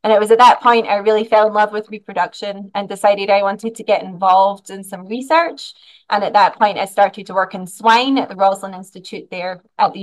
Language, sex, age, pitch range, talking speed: English, female, 20-39, 195-225 Hz, 240 wpm